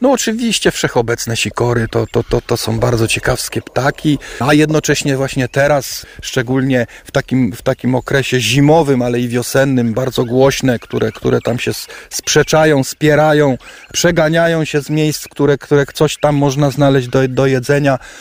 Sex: male